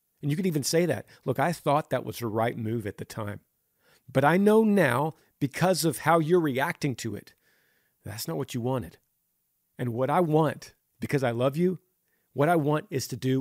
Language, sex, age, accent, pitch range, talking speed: English, male, 40-59, American, 125-165 Hz, 210 wpm